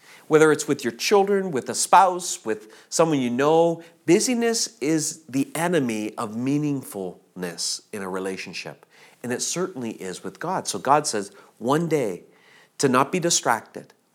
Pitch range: 120-195 Hz